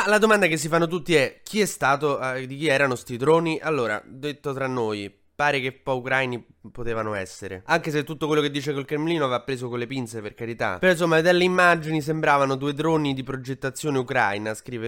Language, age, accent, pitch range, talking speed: Italian, 20-39, native, 115-150 Hz, 205 wpm